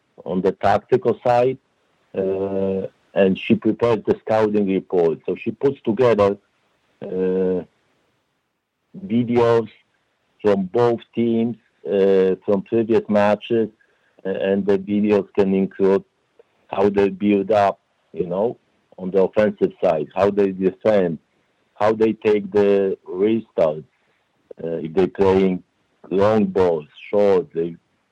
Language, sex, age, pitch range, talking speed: English, male, 60-79, 95-110 Hz, 120 wpm